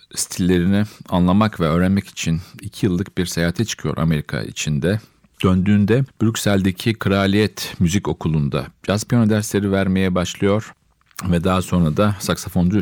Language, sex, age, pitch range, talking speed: Turkish, male, 50-69, 90-110 Hz, 125 wpm